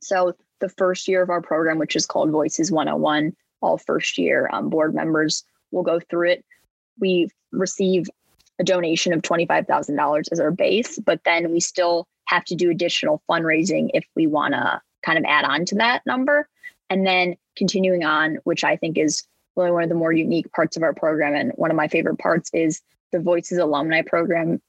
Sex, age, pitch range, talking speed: female, 20-39, 165-190 Hz, 195 wpm